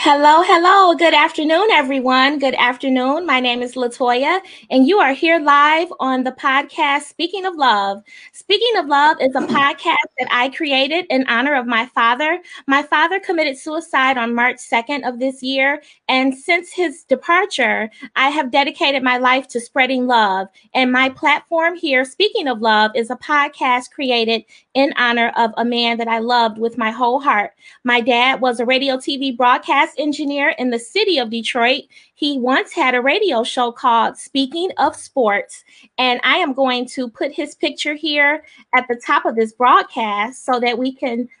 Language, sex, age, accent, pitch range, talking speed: English, female, 20-39, American, 245-310 Hz, 180 wpm